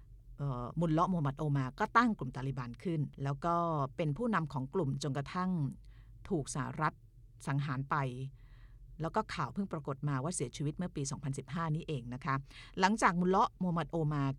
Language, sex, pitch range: Thai, female, 130-175 Hz